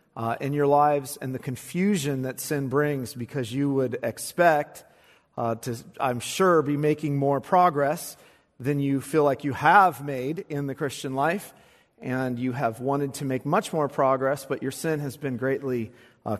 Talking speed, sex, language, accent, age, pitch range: 180 wpm, male, English, American, 40-59, 130-180 Hz